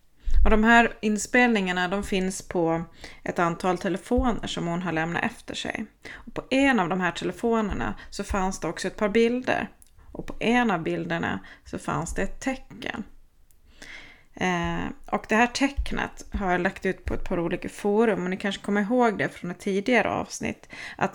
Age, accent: 30-49, native